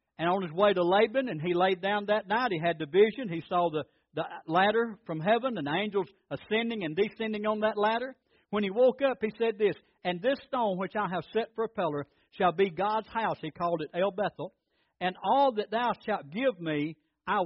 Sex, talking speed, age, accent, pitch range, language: male, 225 wpm, 60-79, American, 160-225 Hz, English